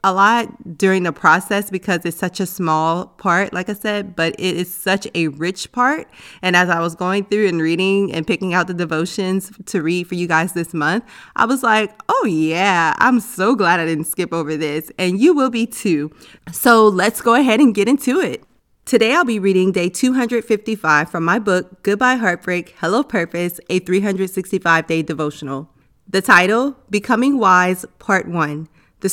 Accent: American